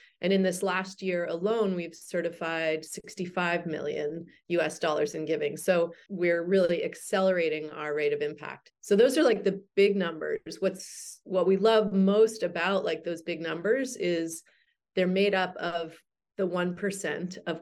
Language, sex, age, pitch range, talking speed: English, female, 30-49, 165-190 Hz, 160 wpm